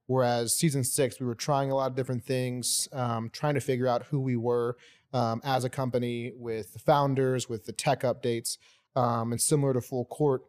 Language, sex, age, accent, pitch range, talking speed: English, male, 30-49, American, 120-140 Hz, 205 wpm